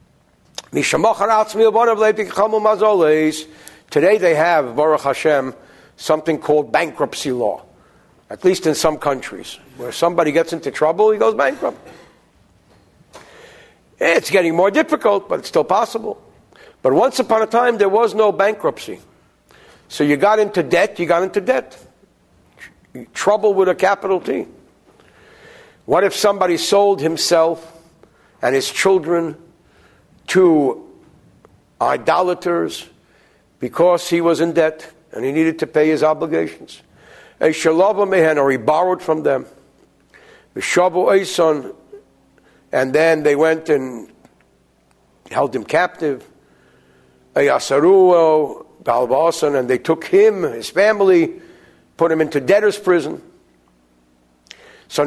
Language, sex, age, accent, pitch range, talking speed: English, male, 60-79, American, 145-205 Hz, 110 wpm